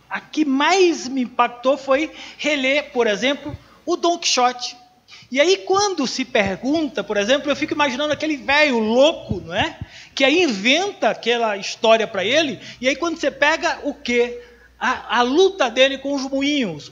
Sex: male